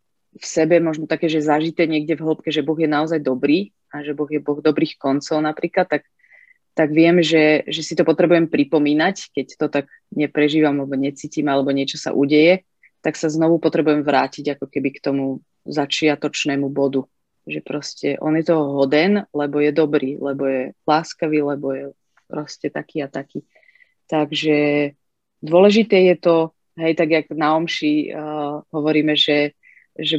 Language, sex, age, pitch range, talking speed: Slovak, female, 30-49, 145-160 Hz, 165 wpm